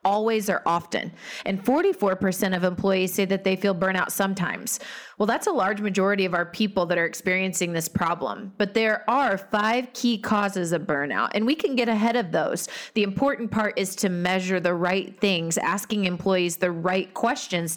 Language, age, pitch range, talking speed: English, 30-49, 180-225 Hz, 185 wpm